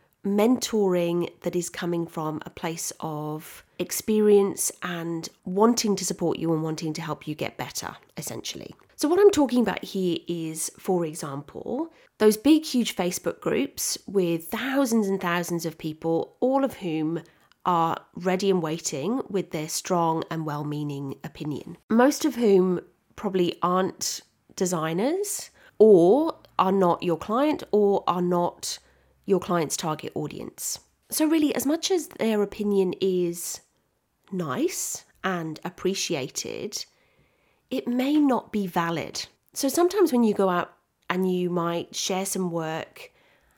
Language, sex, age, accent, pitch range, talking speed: English, female, 30-49, British, 170-230 Hz, 140 wpm